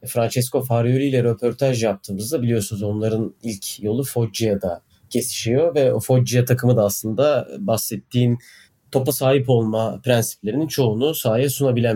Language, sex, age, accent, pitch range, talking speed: Turkish, male, 30-49, native, 115-155 Hz, 125 wpm